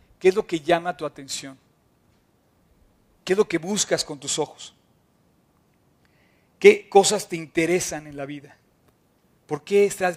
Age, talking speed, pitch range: 50-69, 150 wpm, 150-185 Hz